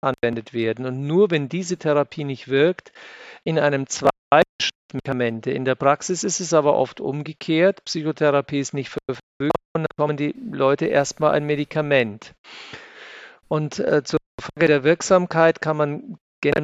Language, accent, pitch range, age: German, German, 140-165 Hz, 50-69